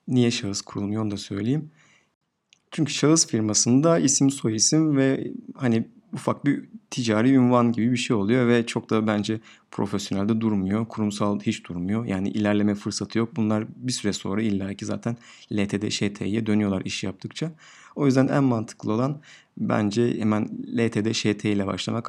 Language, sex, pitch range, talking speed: Turkish, male, 105-125 Hz, 160 wpm